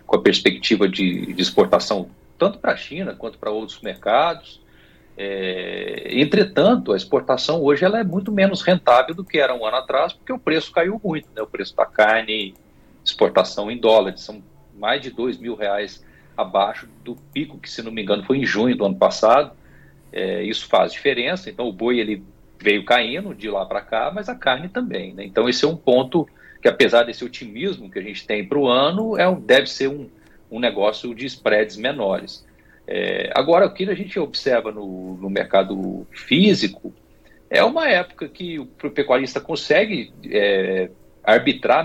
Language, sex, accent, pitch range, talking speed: Portuguese, male, Brazilian, 100-155 Hz, 175 wpm